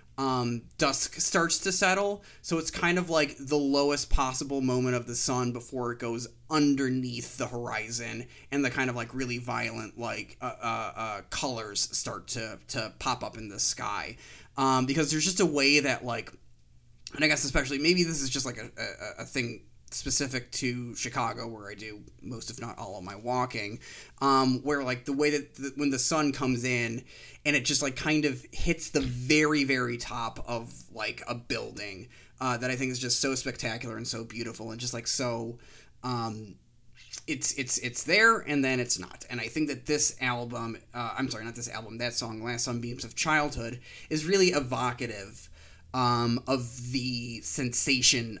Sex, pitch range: male, 115-140 Hz